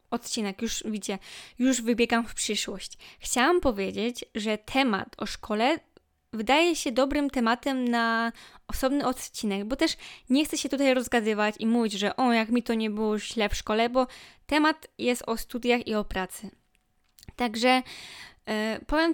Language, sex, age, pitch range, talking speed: Polish, female, 10-29, 220-260 Hz, 155 wpm